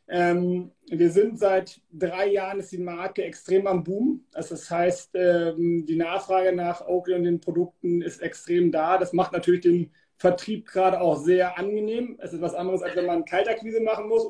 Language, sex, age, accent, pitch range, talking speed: German, male, 40-59, German, 175-195 Hz, 175 wpm